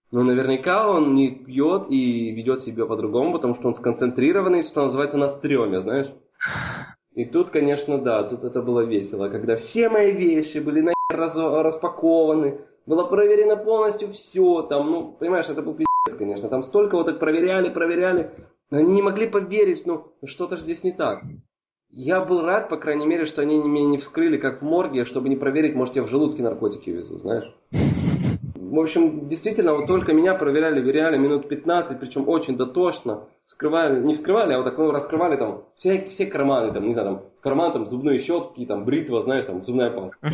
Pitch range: 130-170 Hz